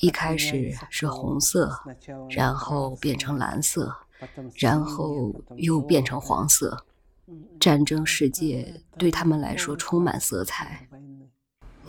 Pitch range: 140-170 Hz